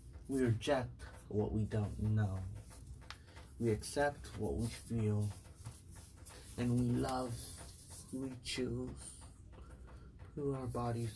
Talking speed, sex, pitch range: 100 wpm, male, 90-120 Hz